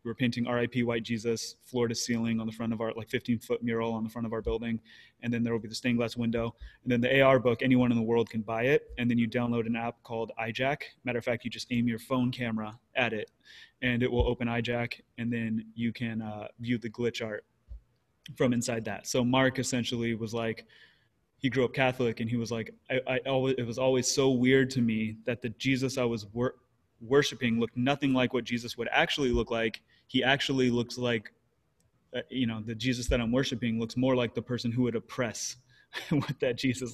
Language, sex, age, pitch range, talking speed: English, male, 20-39, 115-130 Hz, 225 wpm